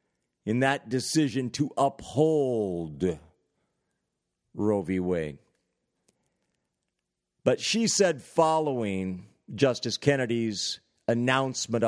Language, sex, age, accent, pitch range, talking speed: English, male, 50-69, American, 115-180 Hz, 75 wpm